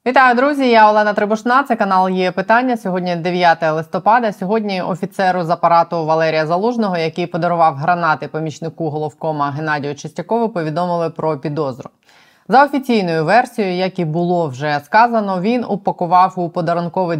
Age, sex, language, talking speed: 20-39, female, Ukrainian, 140 wpm